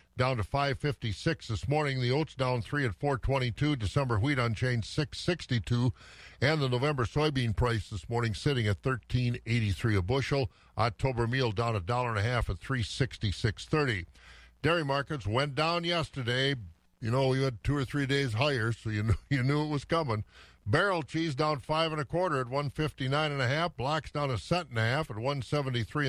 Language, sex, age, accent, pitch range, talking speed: English, male, 50-69, American, 115-145 Hz, 185 wpm